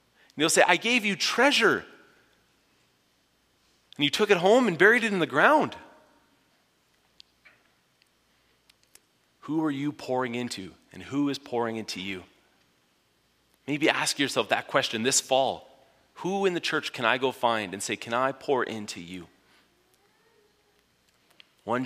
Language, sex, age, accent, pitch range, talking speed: English, male, 30-49, American, 95-135 Hz, 140 wpm